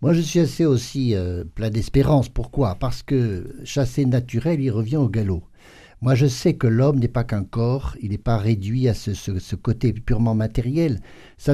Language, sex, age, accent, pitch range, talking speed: French, male, 50-69, French, 110-145 Hz, 200 wpm